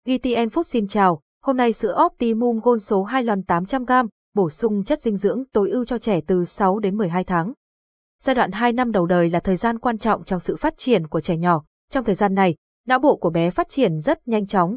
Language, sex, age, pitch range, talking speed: Vietnamese, female, 20-39, 185-250 Hz, 240 wpm